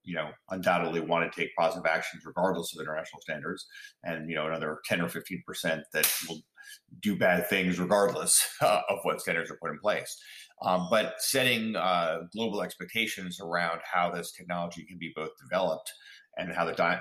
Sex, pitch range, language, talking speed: male, 80-110 Hz, English, 180 wpm